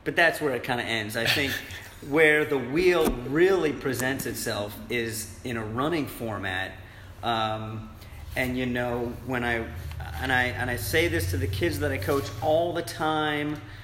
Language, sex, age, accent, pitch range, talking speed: English, male, 40-59, American, 115-150 Hz, 180 wpm